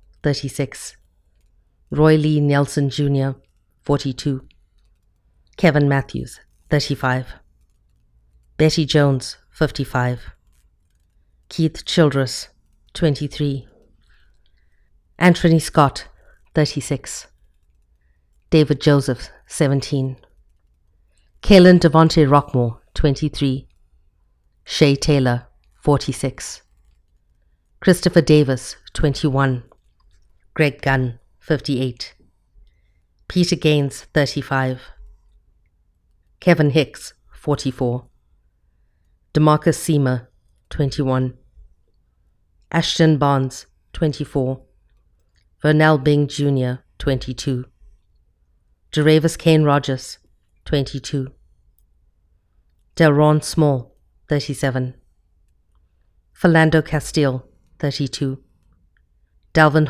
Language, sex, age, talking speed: English, female, 50-69, 60 wpm